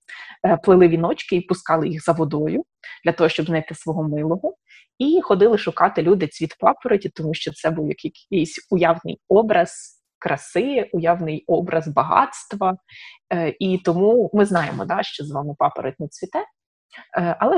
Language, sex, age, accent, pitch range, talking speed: Ukrainian, female, 20-39, native, 160-190 Hz, 140 wpm